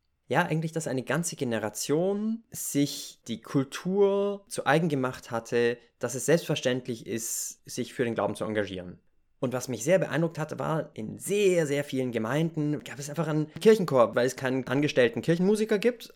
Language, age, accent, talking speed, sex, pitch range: German, 20-39, German, 170 wpm, male, 115-160 Hz